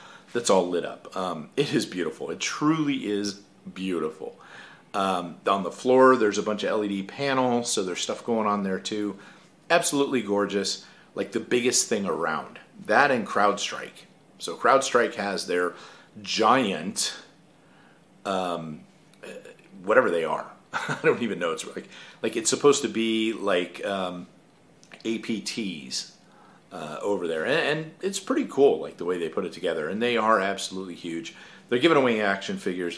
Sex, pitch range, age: male, 95-140 Hz, 40-59